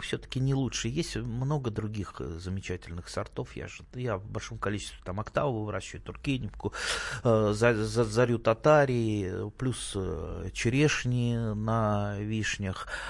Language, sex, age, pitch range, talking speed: Russian, male, 30-49, 100-115 Hz, 125 wpm